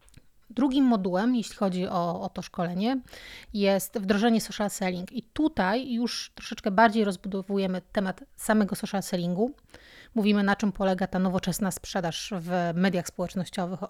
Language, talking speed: Polish, 140 wpm